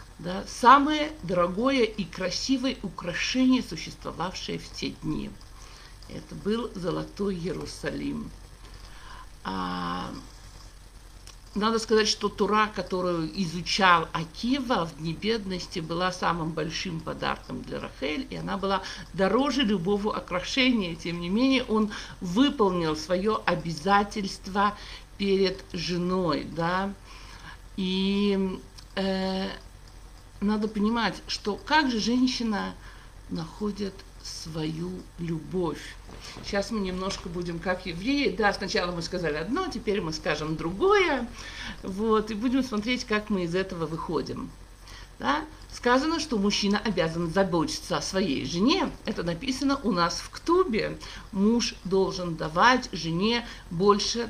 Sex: male